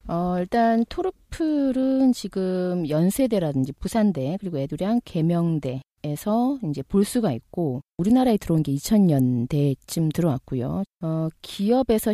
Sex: female